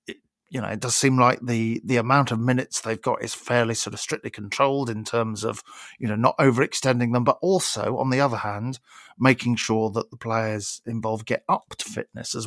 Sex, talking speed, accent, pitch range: male, 210 wpm, British, 115-130 Hz